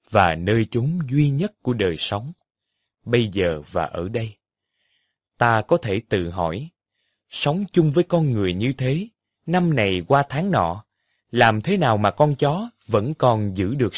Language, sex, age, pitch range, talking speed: Vietnamese, male, 20-39, 100-155 Hz, 170 wpm